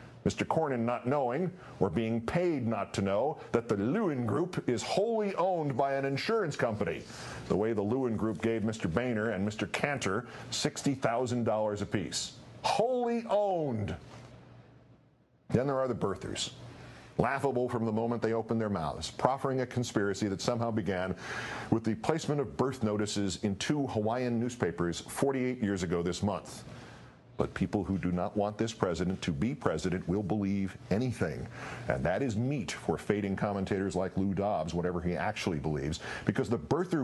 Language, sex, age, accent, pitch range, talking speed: English, male, 50-69, American, 105-140 Hz, 165 wpm